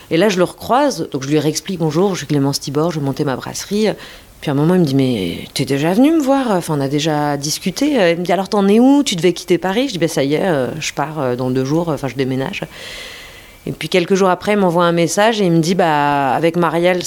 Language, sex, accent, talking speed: French, female, French, 275 wpm